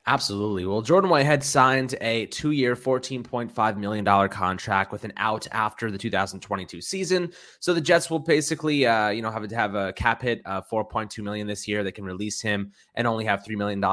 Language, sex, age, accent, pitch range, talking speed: English, male, 20-39, American, 95-120 Hz, 200 wpm